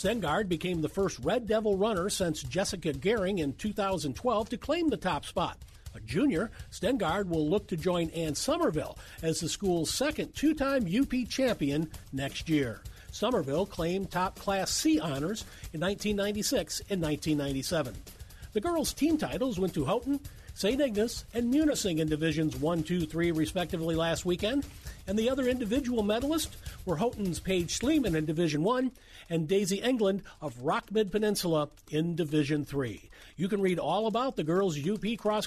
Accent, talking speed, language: American, 160 wpm, English